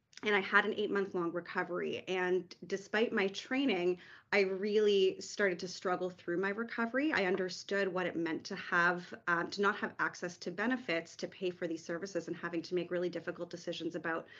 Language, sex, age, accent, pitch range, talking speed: English, female, 30-49, American, 175-200 Hz, 195 wpm